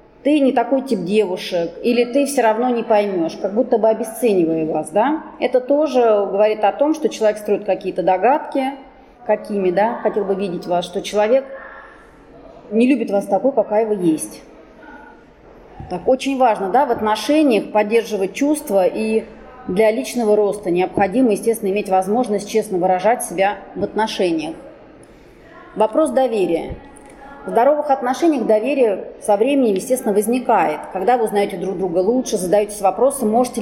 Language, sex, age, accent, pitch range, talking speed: Russian, female, 30-49, native, 195-245 Hz, 145 wpm